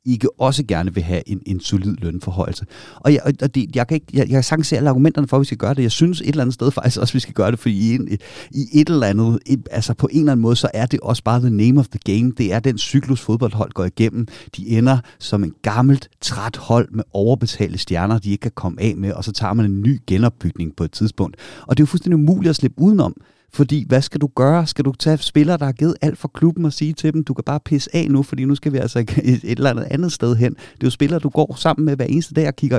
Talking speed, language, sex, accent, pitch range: 285 wpm, Danish, male, native, 110-140 Hz